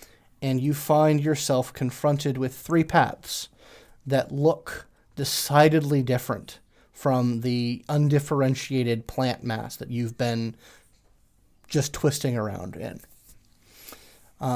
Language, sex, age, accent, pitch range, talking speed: English, male, 30-49, American, 120-150 Hz, 105 wpm